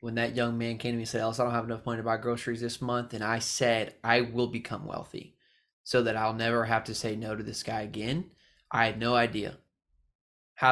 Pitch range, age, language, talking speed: 115-140 Hz, 20-39, English, 245 wpm